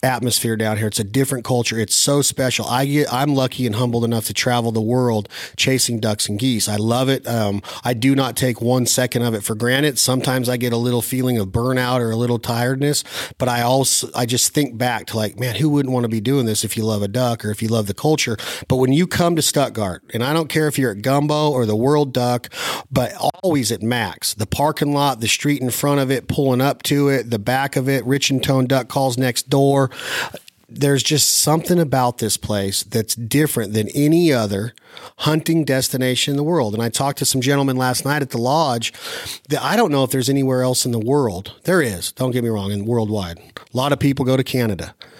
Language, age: English, 40-59